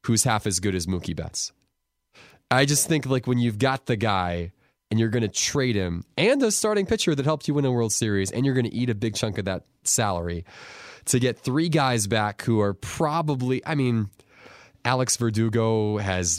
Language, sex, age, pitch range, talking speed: English, male, 20-39, 100-135 Hz, 200 wpm